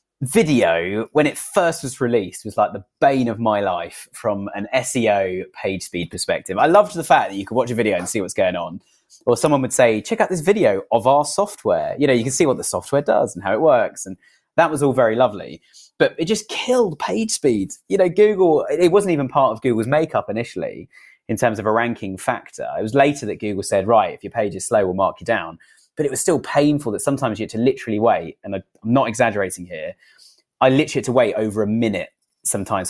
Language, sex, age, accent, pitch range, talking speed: English, male, 20-39, British, 110-165 Hz, 235 wpm